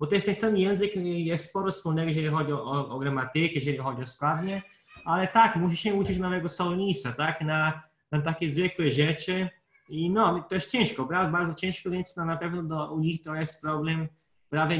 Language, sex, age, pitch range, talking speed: Polish, male, 20-39, 135-160 Hz, 195 wpm